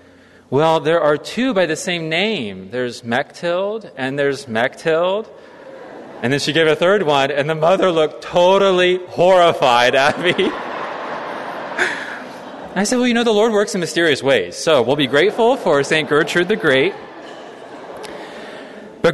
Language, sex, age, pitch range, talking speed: English, male, 30-49, 135-210 Hz, 155 wpm